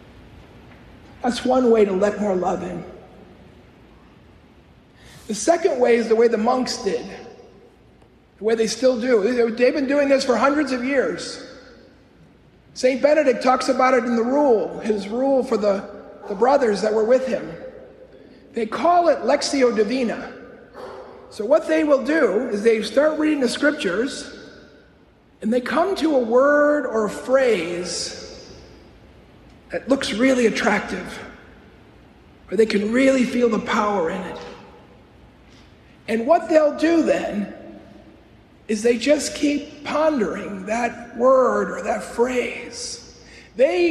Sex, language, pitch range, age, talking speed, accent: male, English, 225-285 Hz, 40-59, 140 wpm, American